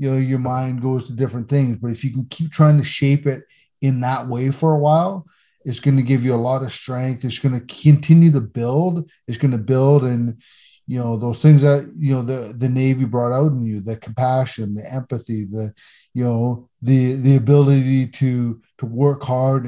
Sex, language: male, English